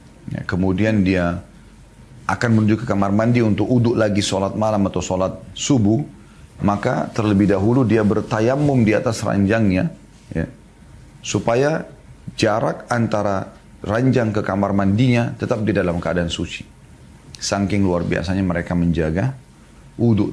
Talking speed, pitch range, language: 125 wpm, 90-115 Hz, Indonesian